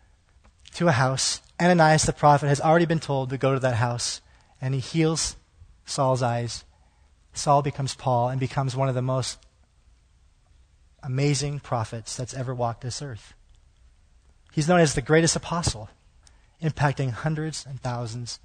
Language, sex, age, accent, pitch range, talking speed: English, male, 30-49, American, 95-155 Hz, 150 wpm